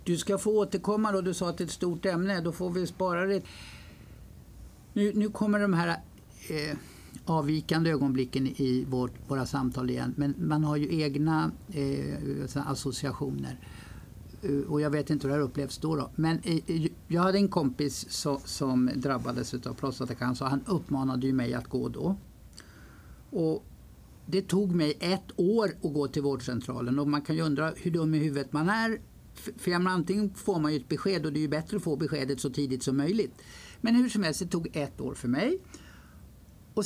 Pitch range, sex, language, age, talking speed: 140-195 Hz, male, Swedish, 60-79, 180 wpm